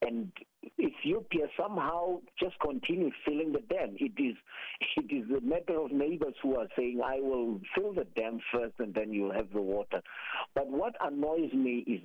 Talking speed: 175 wpm